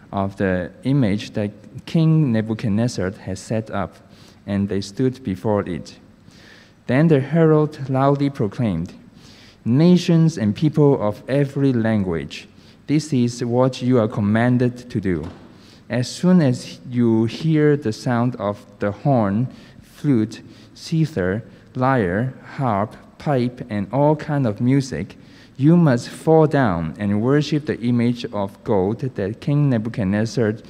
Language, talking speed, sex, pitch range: English, 130 wpm, male, 105-140 Hz